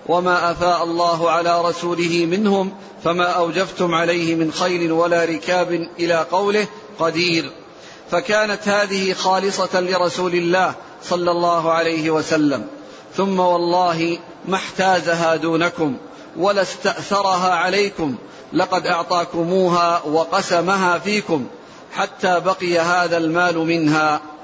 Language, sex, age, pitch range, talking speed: Arabic, male, 40-59, 170-195 Hz, 100 wpm